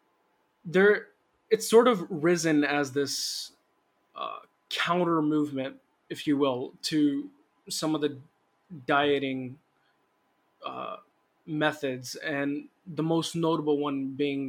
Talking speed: 110 wpm